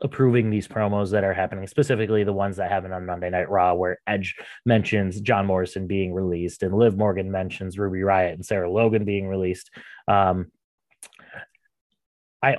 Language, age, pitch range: English, 20-39, 95-115 Hz